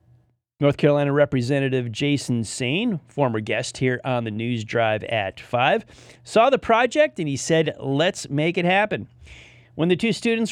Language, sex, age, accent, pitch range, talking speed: English, male, 30-49, American, 125-185 Hz, 160 wpm